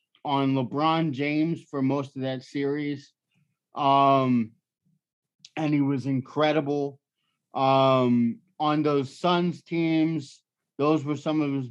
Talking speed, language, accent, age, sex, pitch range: 120 wpm, English, American, 30-49, male, 130-150 Hz